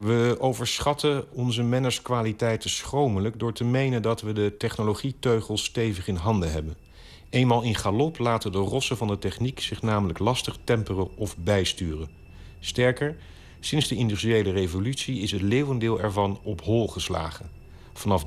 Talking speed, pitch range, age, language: 150 wpm, 95-120 Hz, 50-69, Dutch